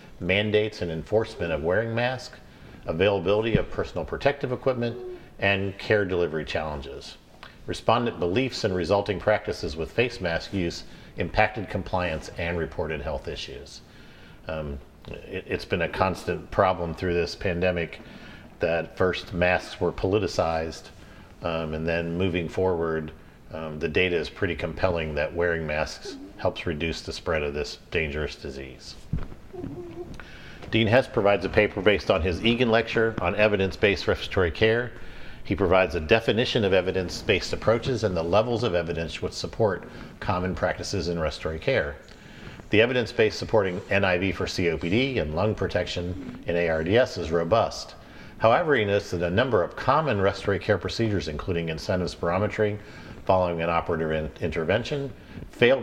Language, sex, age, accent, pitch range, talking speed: English, male, 50-69, American, 85-110 Hz, 140 wpm